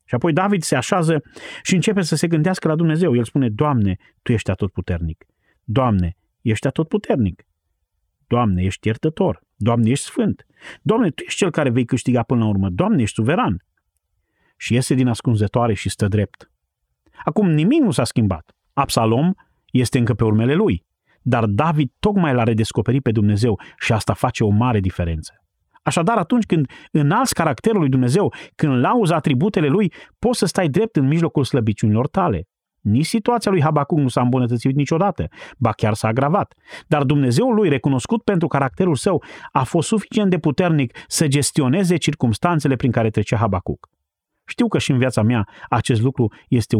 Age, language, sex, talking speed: 30-49, Romanian, male, 165 wpm